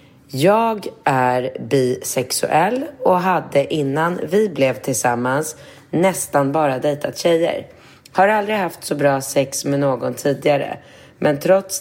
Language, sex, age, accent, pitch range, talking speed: Swedish, female, 30-49, native, 135-175 Hz, 120 wpm